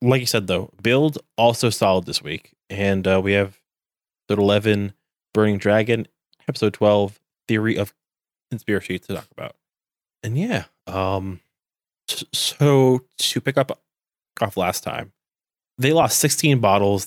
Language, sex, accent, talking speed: English, male, American, 135 wpm